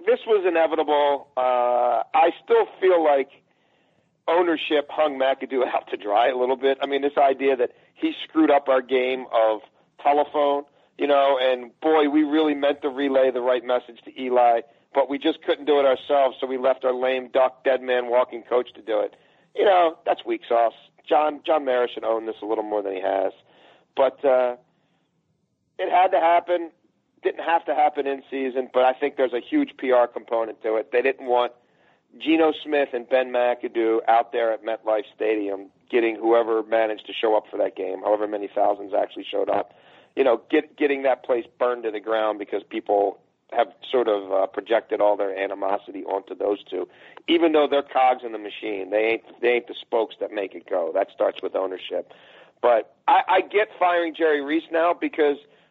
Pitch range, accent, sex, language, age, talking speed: 115-150 Hz, American, male, English, 40-59, 195 wpm